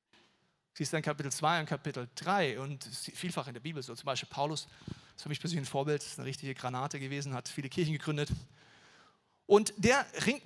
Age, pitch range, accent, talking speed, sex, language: 40-59, 150-225 Hz, German, 210 wpm, male, German